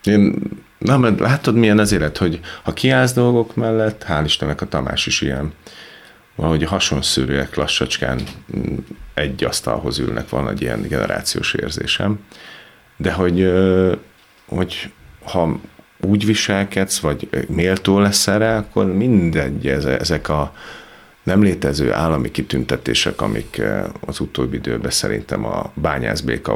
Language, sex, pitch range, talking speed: Hungarian, male, 70-100 Hz, 125 wpm